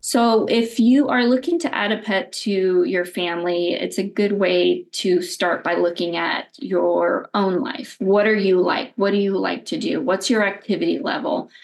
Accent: American